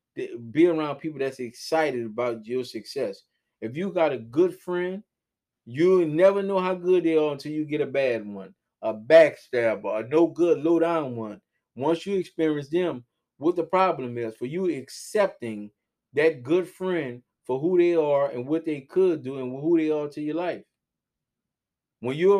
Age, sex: 20-39, male